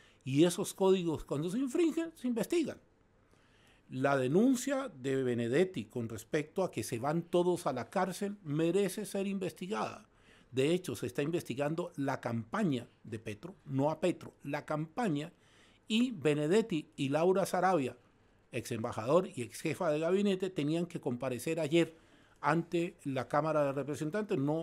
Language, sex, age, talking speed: Spanish, male, 50-69, 150 wpm